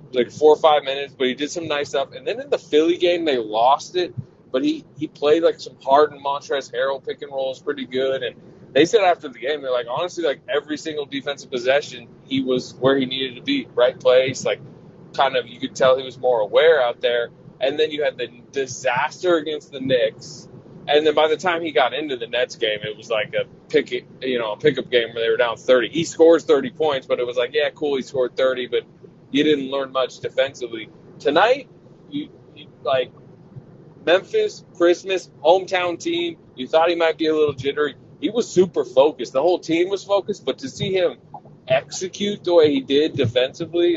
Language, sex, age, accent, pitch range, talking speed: English, male, 20-39, American, 140-205 Hz, 220 wpm